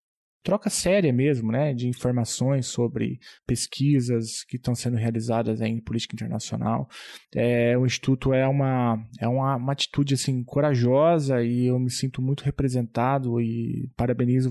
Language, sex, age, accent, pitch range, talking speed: Portuguese, male, 20-39, Brazilian, 120-135 Hz, 130 wpm